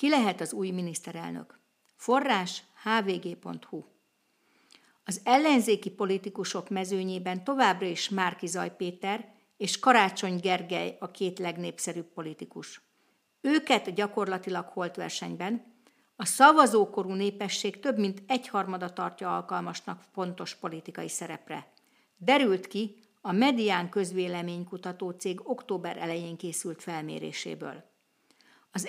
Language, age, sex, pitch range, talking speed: Hungarian, 50-69, female, 180-225 Hz, 100 wpm